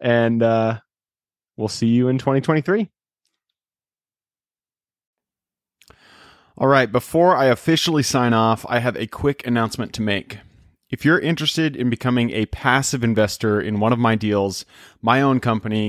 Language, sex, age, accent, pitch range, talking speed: English, male, 30-49, American, 110-130 Hz, 140 wpm